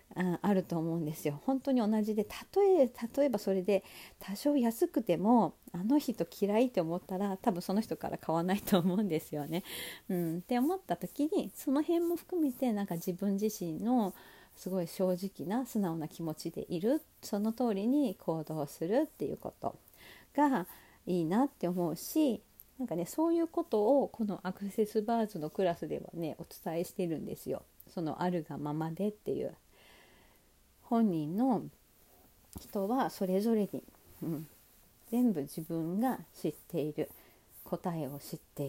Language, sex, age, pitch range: Japanese, female, 40-59, 170-230 Hz